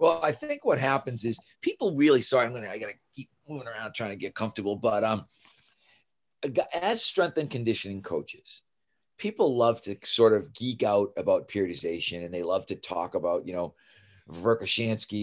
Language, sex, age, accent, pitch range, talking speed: English, male, 40-59, American, 105-135 Hz, 185 wpm